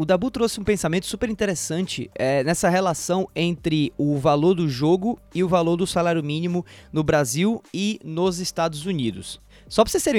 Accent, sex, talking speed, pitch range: Brazilian, male, 185 wpm, 140-185 Hz